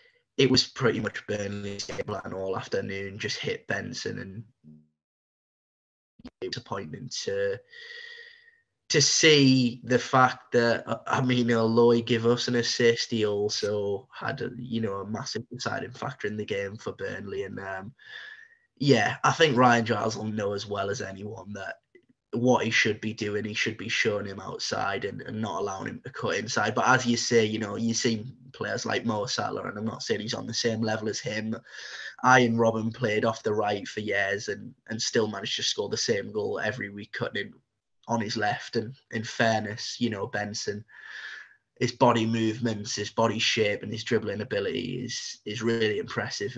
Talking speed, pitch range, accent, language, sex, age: 185 wpm, 105-125 Hz, British, English, male, 10-29